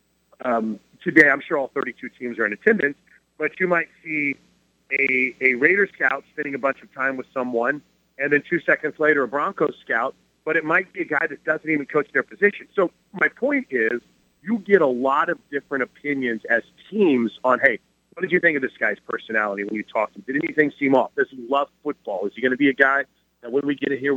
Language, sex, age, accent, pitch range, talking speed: English, male, 40-59, American, 125-165 Hz, 235 wpm